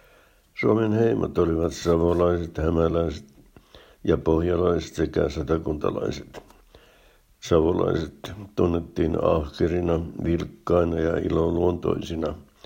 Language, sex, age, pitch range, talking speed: Finnish, male, 60-79, 80-95 Hz, 70 wpm